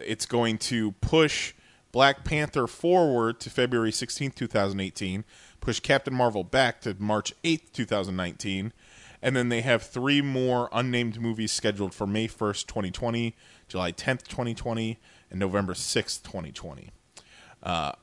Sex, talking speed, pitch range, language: male, 130 wpm, 100-125 Hz, English